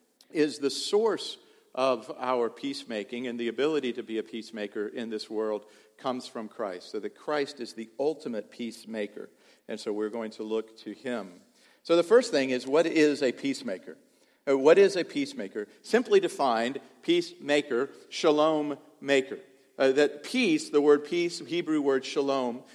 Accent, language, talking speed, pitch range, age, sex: American, English, 160 wpm, 125-170 Hz, 50-69, male